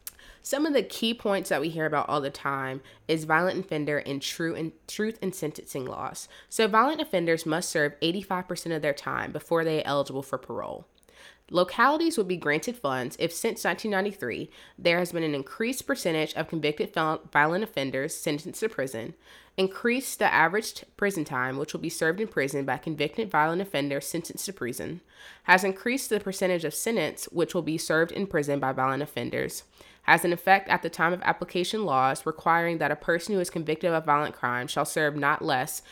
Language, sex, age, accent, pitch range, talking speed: English, female, 20-39, American, 145-185 Hz, 190 wpm